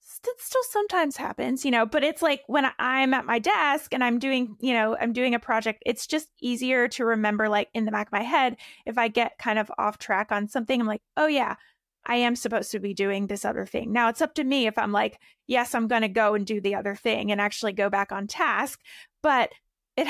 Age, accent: 20-39, American